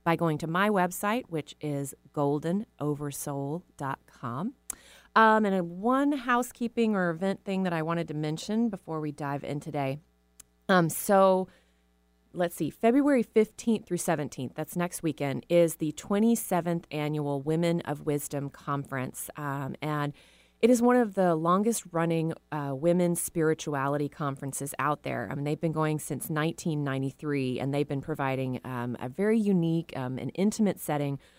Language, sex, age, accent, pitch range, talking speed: English, female, 30-49, American, 140-180 Hz, 145 wpm